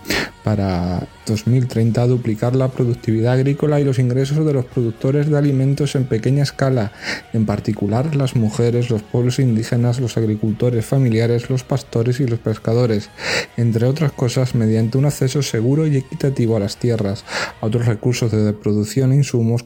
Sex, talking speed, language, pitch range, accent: male, 155 wpm, Spanish, 110-130 Hz, Spanish